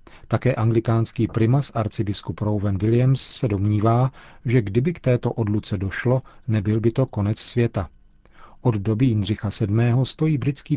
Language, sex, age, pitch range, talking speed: Czech, male, 40-59, 105-125 Hz, 140 wpm